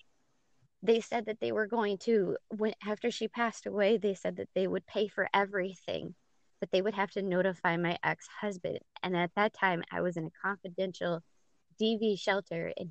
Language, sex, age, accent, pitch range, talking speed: English, female, 20-39, American, 180-230 Hz, 180 wpm